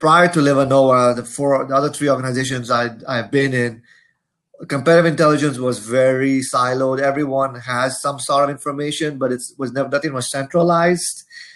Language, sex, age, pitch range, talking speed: English, male, 30-49, 125-150 Hz, 160 wpm